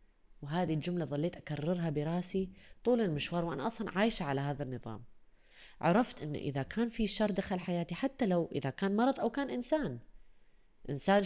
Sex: female